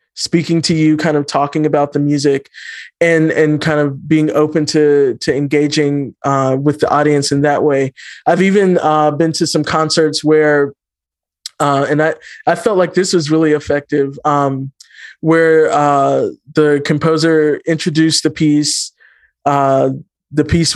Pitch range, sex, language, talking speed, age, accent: 145-170 Hz, male, English, 155 wpm, 20-39, American